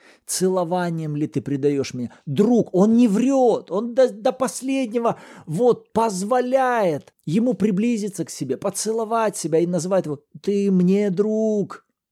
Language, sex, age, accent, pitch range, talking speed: Russian, male, 30-49, native, 145-210 Hz, 130 wpm